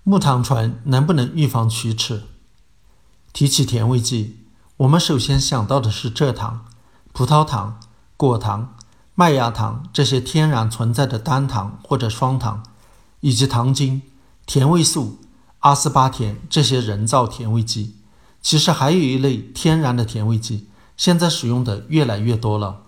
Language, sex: Chinese, male